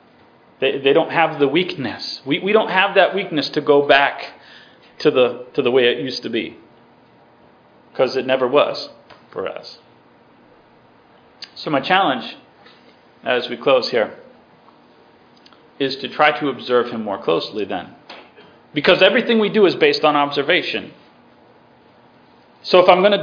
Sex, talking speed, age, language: male, 150 wpm, 40-59, English